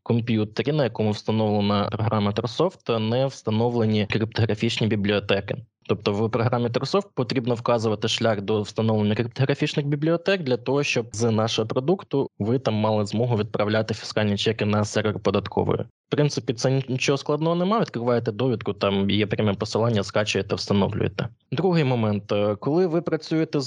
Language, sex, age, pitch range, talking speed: Ukrainian, male, 20-39, 105-135 Hz, 140 wpm